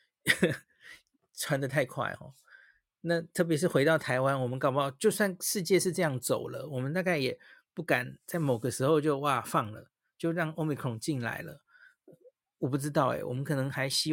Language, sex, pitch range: Chinese, male, 135-180 Hz